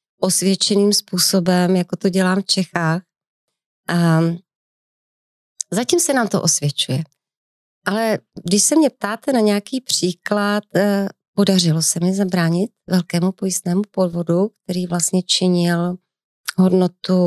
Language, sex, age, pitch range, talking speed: Slovak, female, 30-49, 170-210 Hz, 110 wpm